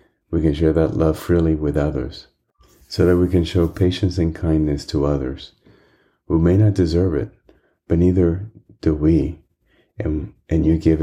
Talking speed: 170 wpm